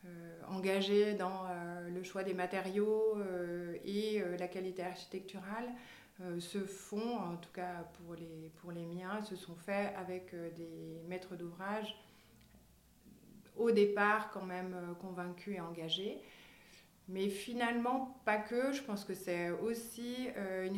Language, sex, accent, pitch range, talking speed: French, female, French, 175-200 Hz, 150 wpm